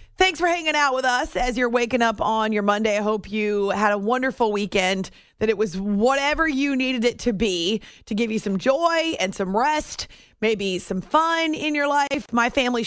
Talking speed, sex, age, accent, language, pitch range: 210 wpm, female, 30-49, American, English, 205-245 Hz